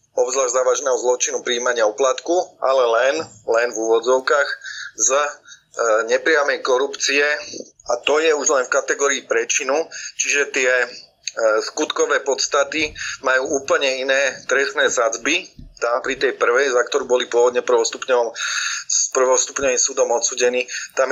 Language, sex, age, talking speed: Slovak, male, 30-49, 120 wpm